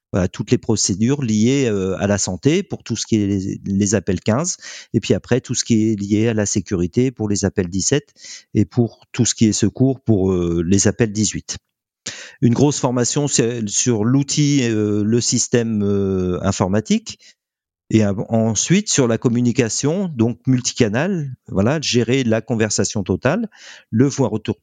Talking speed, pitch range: 170 wpm, 105-130 Hz